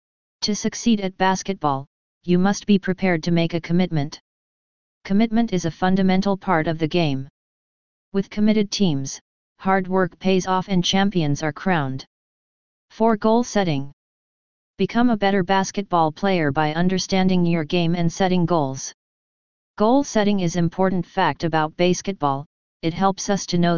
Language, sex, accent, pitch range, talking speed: English, female, American, 165-195 Hz, 140 wpm